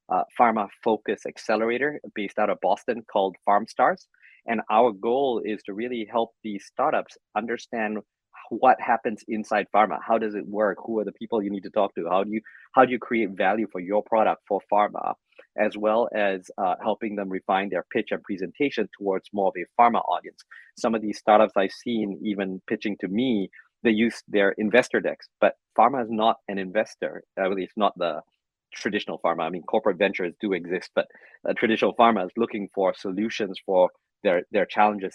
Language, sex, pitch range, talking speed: English, male, 100-115 Hz, 195 wpm